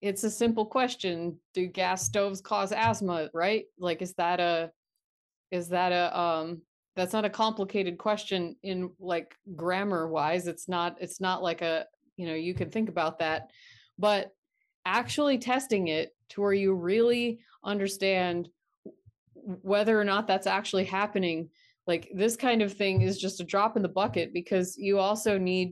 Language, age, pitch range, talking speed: English, 30-49, 175-210 Hz, 165 wpm